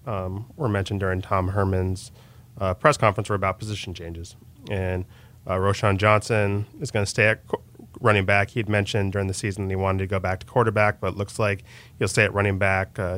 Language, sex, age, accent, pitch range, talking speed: English, male, 20-39, American, 95-110 Hz, 220 wpm